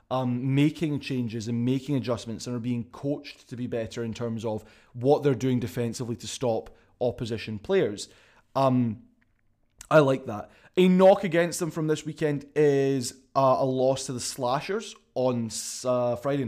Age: 20-39